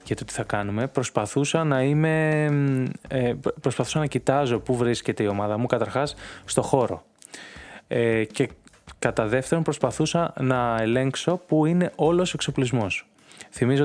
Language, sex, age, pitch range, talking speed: Greek, male, 20-39, 110-145 Hz, 135 wpm